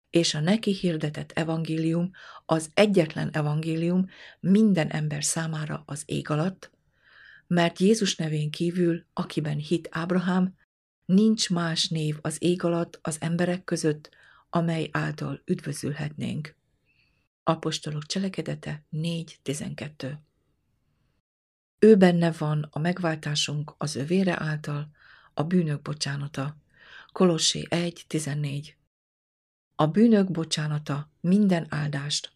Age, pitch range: 50-69, 150-175 Hz